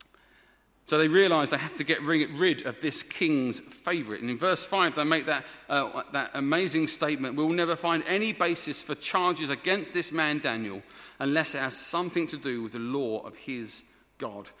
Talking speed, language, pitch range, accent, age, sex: 190 wpm, English, 130-185 Hz, British, 40-59, male